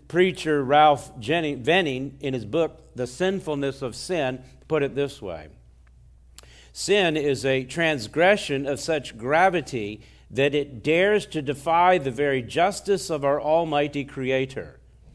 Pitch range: 115-160 Hz